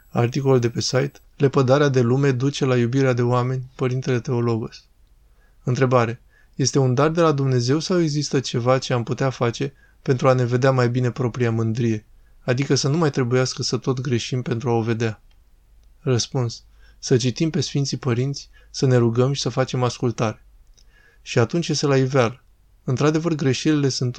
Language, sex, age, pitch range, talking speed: Romanian, male, 20-39, 120-140 Hz, 170 wpm